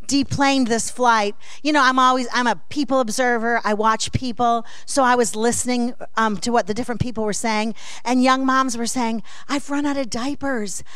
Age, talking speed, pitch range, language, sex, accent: 40-59, 195 wpm, 235-305 Hz, English, female, American